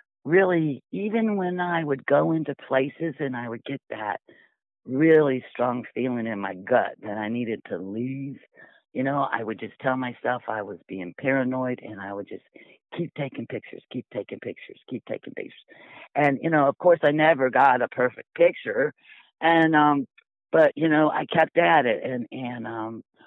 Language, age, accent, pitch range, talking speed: English, 50-69, American, 120-160 Hz, 185 wpm